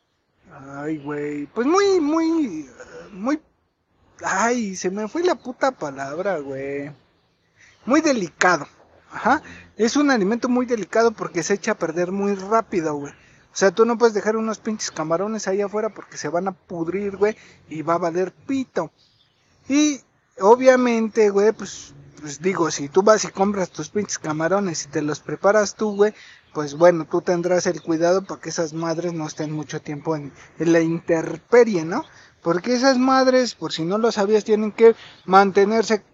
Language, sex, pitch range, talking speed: Spanish, male, 160-230 Hz, 170 wpm